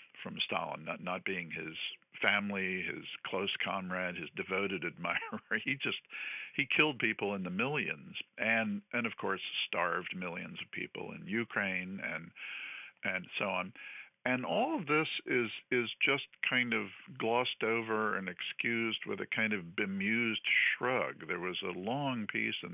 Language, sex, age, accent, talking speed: English, male, 50-69, American, 160 wpm